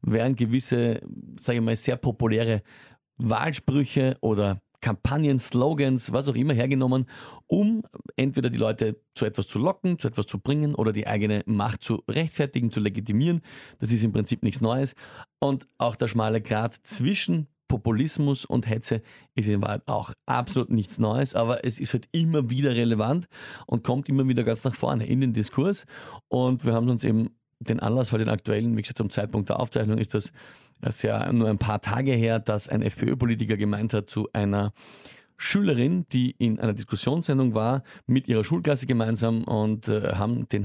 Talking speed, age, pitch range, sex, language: 180 wpm, 40-59, 110-135 Hz, male, German